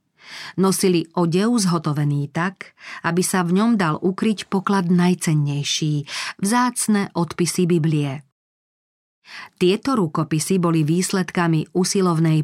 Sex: female